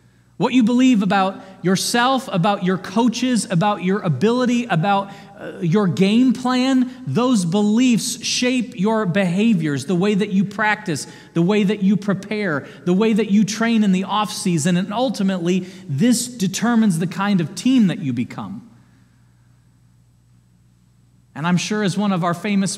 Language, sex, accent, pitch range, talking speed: English, male, American, 130-195 Hz, 150 wpm